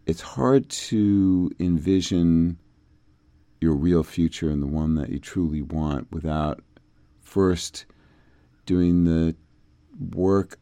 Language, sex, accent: English, male, American